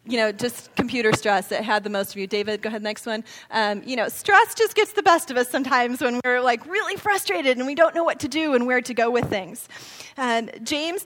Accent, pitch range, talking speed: American, 225-335 Hz, 245 wpm